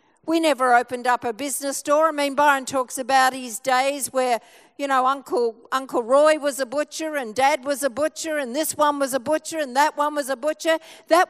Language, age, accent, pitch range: English, 50-69, Australian, 260-310 Hz